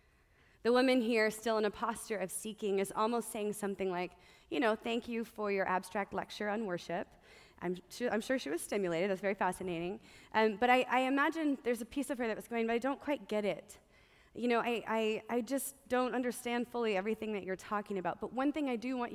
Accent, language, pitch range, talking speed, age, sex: American, English, 185-220 Hz, 230 wpm, 20-39, female